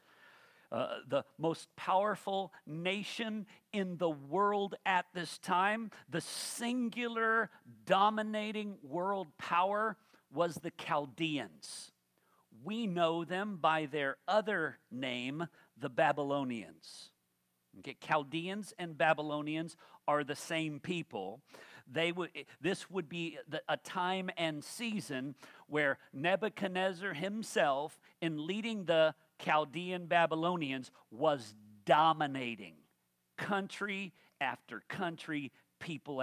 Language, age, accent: English, 50-69, American